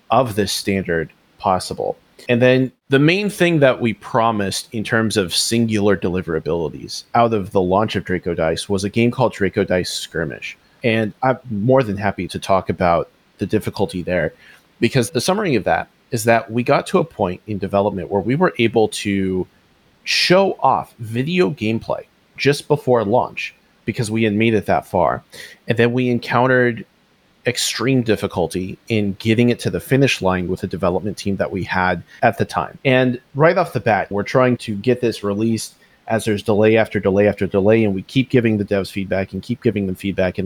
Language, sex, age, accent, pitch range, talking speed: English, male, 30-49, American, 100-125 Hz, 190 wpm